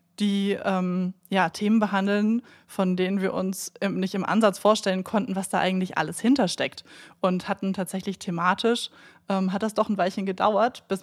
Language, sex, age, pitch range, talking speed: German, female, 20-39, 185-210 Hz, 170 wpm